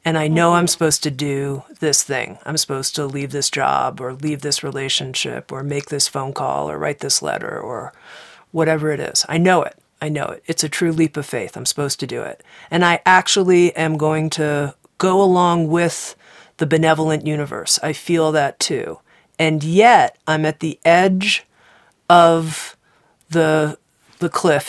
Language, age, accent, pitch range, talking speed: English, 40-59, American, 145-170 Hz, 180 wpm